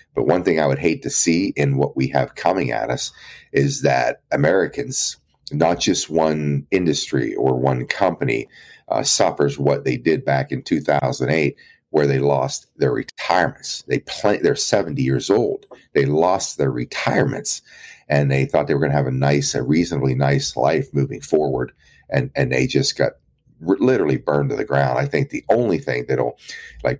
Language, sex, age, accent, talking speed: English, male, 40-59, American, 180 wpm